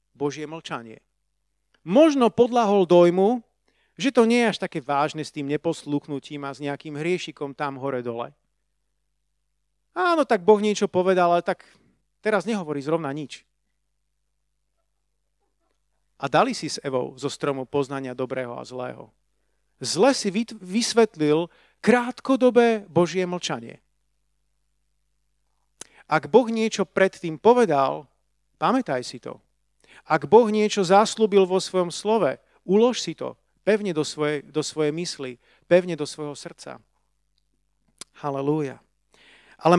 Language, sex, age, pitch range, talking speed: Slovak, male, 40-59, 145-190 Hz, 120 wpm